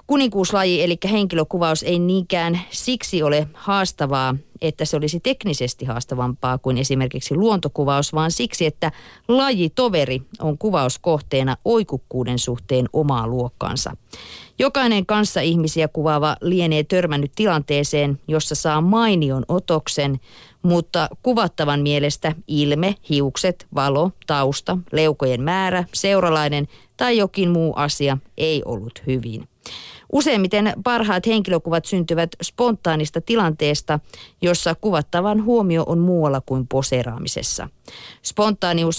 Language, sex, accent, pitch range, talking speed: Finnish, female, native, 140-185 Hz, 105 wpm